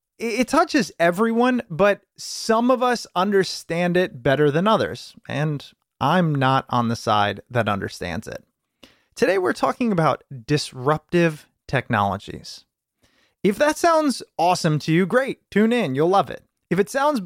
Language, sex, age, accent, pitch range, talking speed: English, male, 30-49, American, 135-210 Hz, 145 wpm